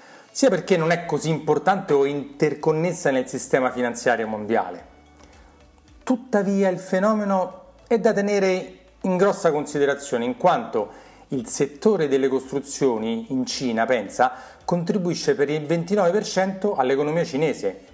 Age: 40-59